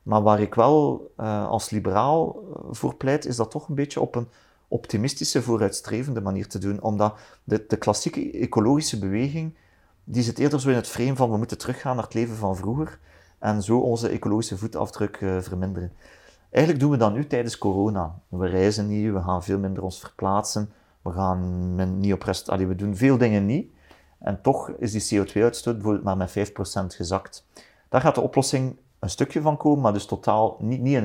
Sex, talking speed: male, 195 wpm